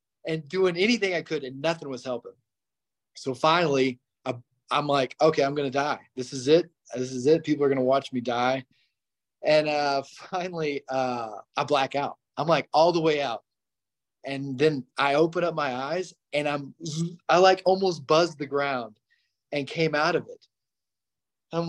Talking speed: 185 wpm